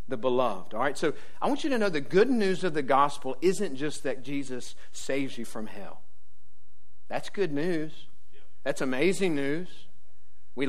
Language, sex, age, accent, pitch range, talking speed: English, male, 40-59, American, 145-200 Hz, 170 wpm